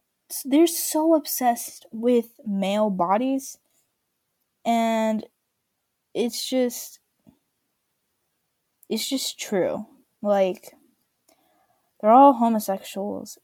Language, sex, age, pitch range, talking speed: English, female, 10-29, 215-275 Hz, 70 wpm